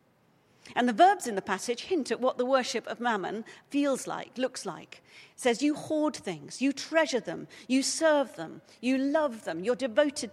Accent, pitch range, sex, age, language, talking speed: British, 195-275 Hz, female, 50-69, English, 190 wpm